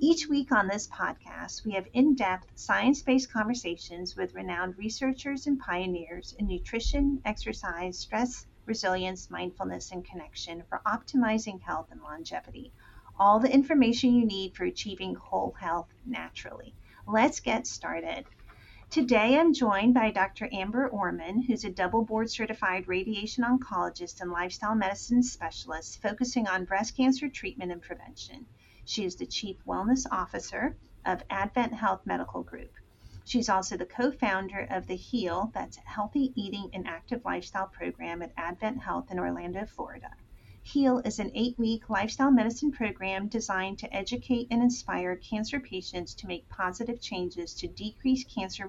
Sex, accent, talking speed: female, American, 145 wpm